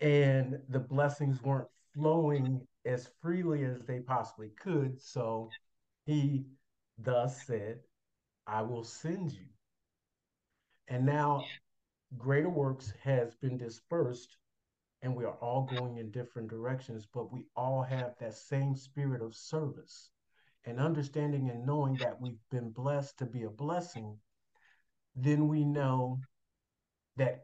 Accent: American